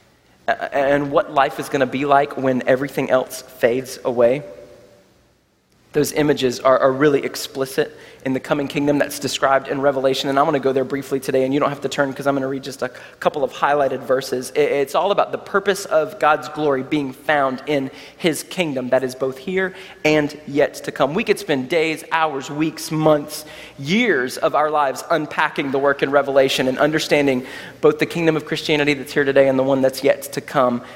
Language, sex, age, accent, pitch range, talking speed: English, male, 30-49, American, 130-155 Hz, 200 wpm